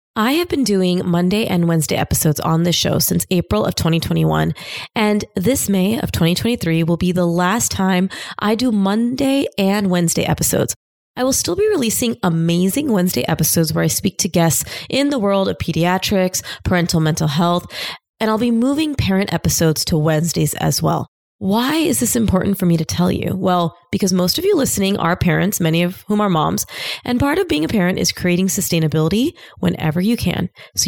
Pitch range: 170-230 Hz